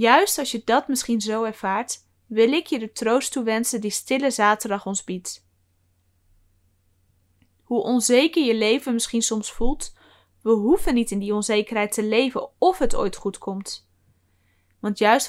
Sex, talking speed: female, 155 wpm